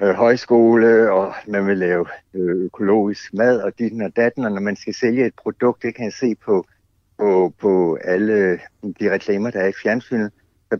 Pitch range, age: 95-115 Hz, 60-79